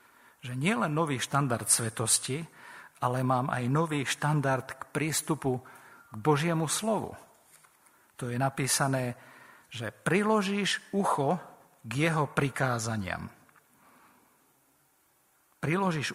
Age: 50-69